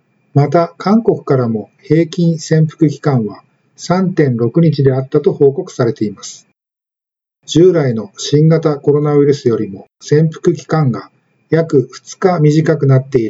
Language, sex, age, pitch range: Japanese, male, 50-69, 130-165 Hz